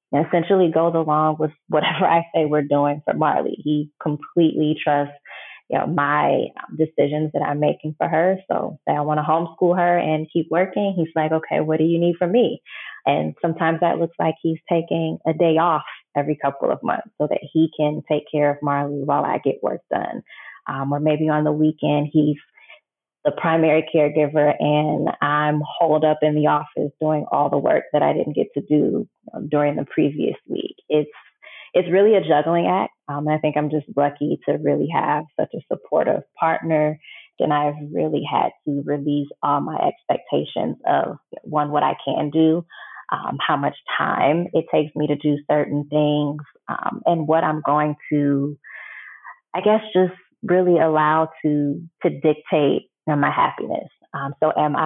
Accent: American